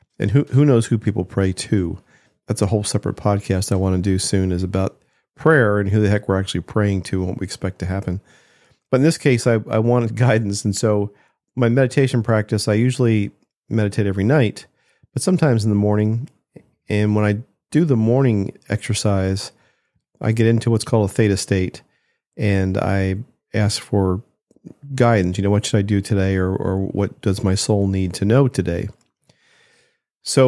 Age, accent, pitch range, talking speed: 40-59, American, 95-120 Hz, 190 wpm